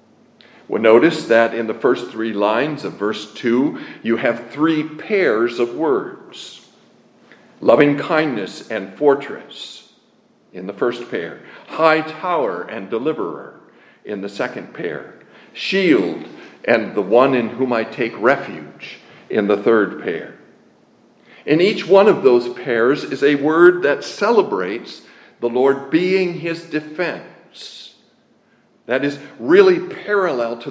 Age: 50-69